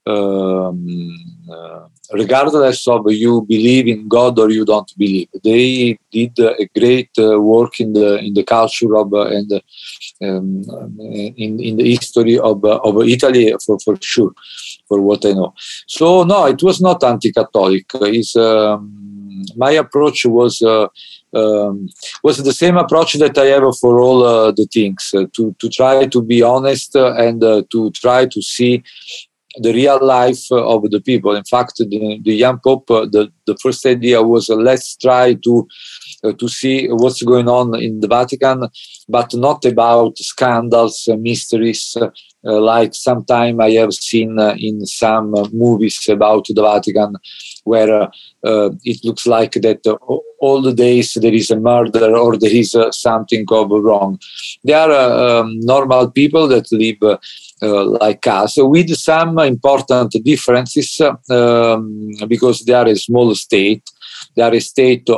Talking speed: 170 wpm